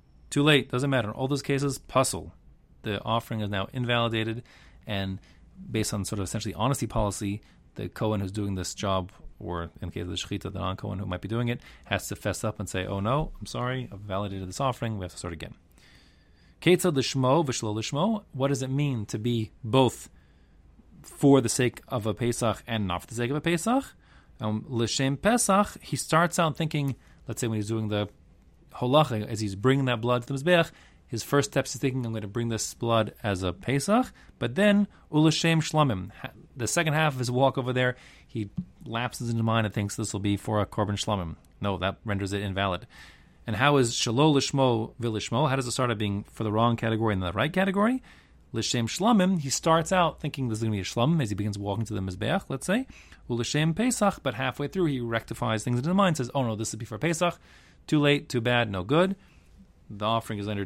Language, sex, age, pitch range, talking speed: English, male, 30-49, 100-135 Hz, 215 wpm